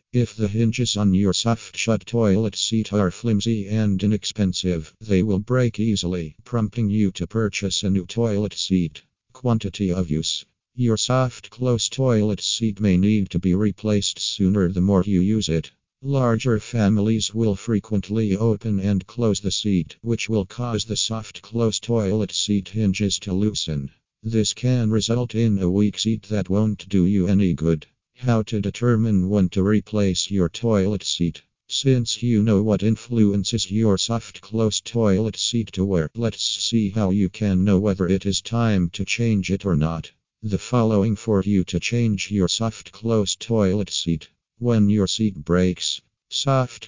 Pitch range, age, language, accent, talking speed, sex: 95-110 Hz, 50-69, English, American, 165 wpm, male